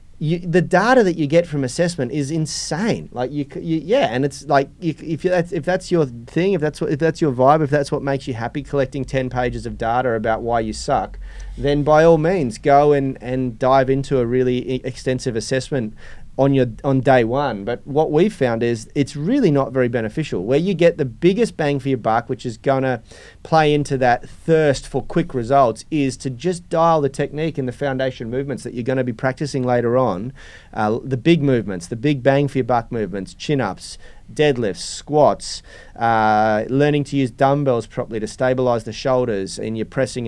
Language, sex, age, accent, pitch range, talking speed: English, male, 30-49, Australian, 115-145 Hz, 205 wpm